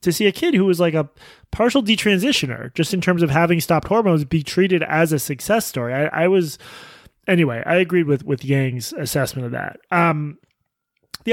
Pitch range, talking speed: 145-185 Hz, 195 wpm